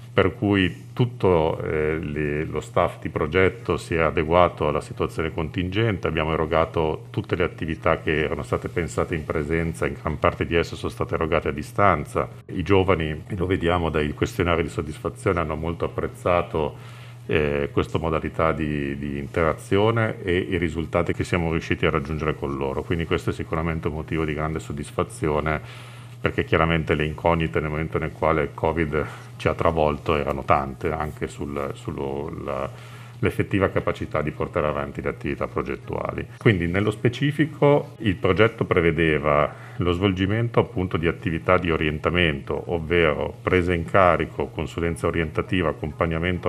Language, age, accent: Italian, 50-69, native